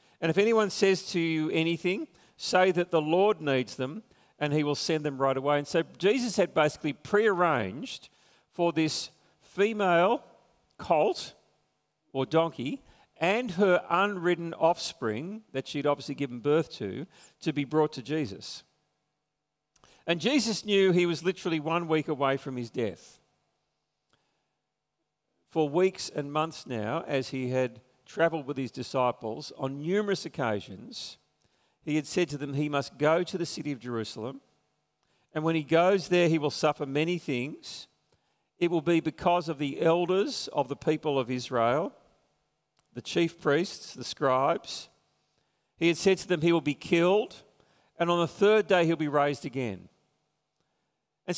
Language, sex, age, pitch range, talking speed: English, male, 50-69, 145-180 Hz, 155 wpm